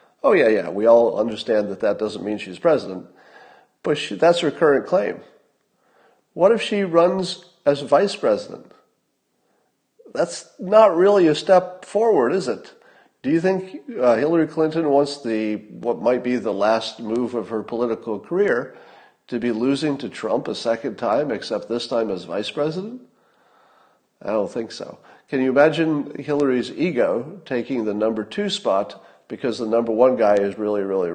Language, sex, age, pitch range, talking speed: English, male, 40-59, 110-170 Hz, 170 wpm